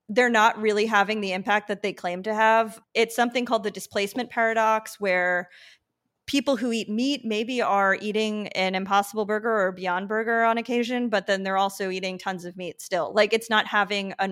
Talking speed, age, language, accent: 195 wpm, 30-49, English, American